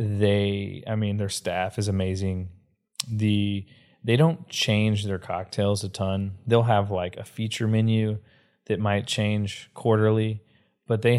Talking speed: 145 wpm